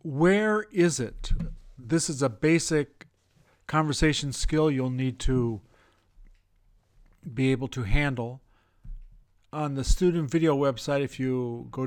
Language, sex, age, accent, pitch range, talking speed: English, male, 50-69, American, 115-145 Hz, 120 wpm